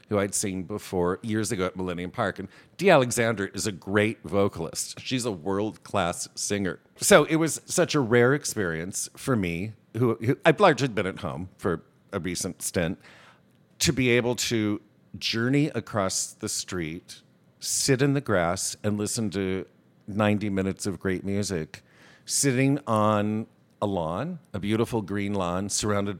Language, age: English, 50-69